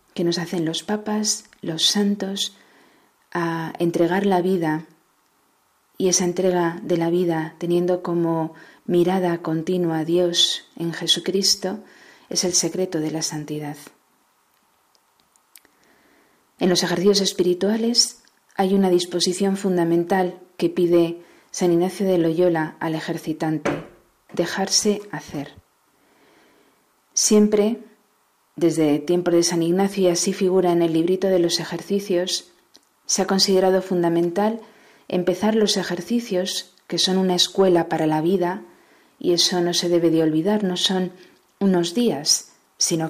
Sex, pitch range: female, 170-195 Hz